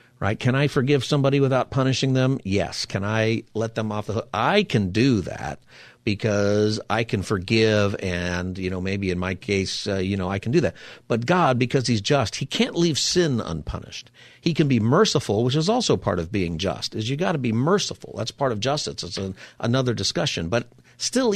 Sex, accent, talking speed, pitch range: male, American, 210 wpm, 100-130 Hz